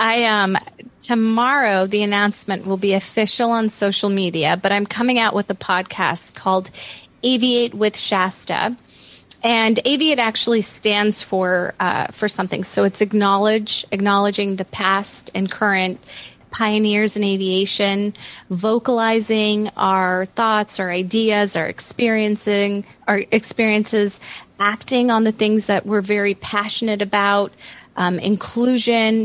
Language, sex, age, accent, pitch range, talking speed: English, female, 30-49, American, 195-225 Hz, 125 wpm